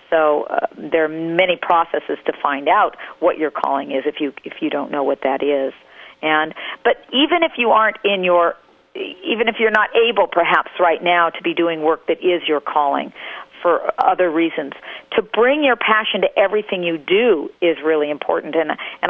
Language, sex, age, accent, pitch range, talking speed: English, female, 50-69, American, 160-200 Hz, 195 wpm